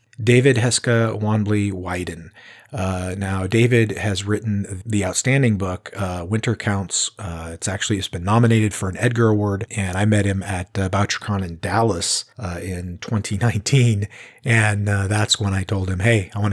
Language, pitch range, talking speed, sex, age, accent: English, 95-115 Hz, 170 wpm, male, 40-59, American